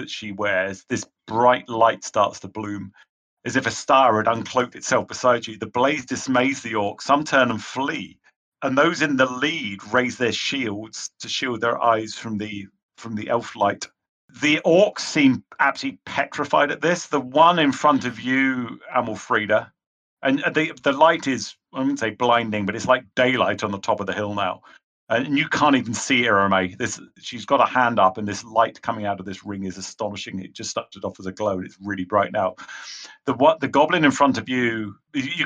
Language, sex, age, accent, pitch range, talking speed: English, male, 40-59, British, 105-130 Hz, 205 wpm